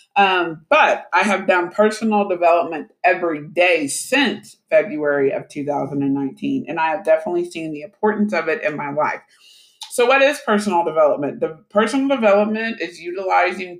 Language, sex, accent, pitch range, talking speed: English, male, American, 165-210 Hz, 150 wpm